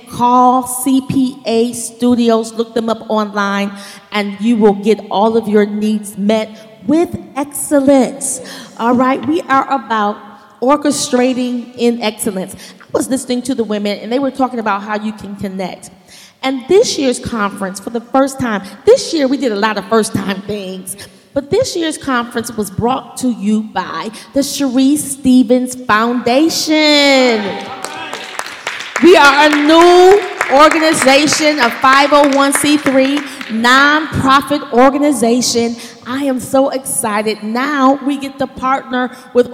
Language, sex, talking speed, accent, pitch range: English, female, 140 wpm, American, 220-275 Hz